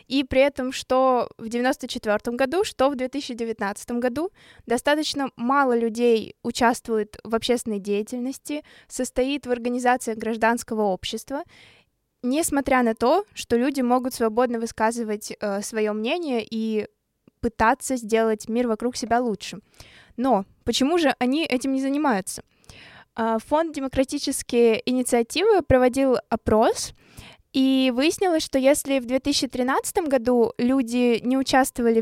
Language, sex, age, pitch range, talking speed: Russian, female, 20-39, 225-260 Hz, 120 wpm